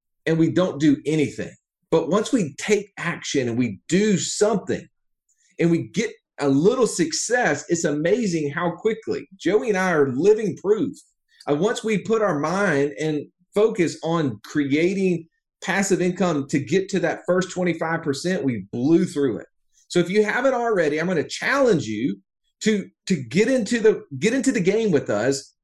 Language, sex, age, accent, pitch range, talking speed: English, male, 40-59, American, 145-205 Hz, 170 wpm